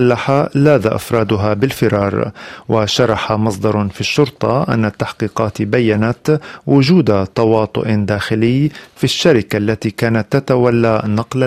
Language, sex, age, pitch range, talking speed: Arabic, male, 40-59, 105-125 Hz, 105 wpm